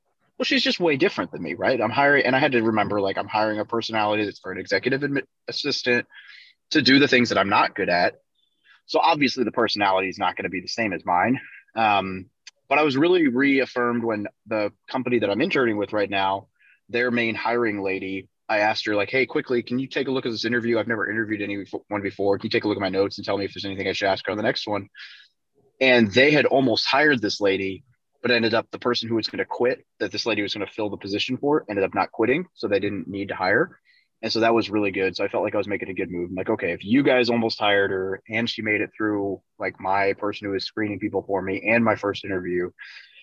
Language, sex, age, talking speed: English, male, 30-49, 260 wpm